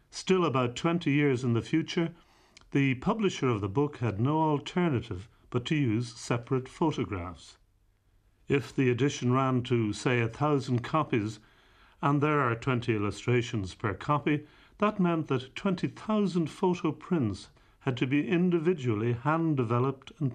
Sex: male